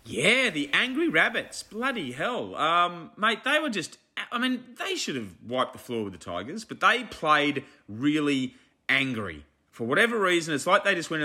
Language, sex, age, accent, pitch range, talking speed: English, male, 30-49, Australian, 120-175 Hz, 185 wpm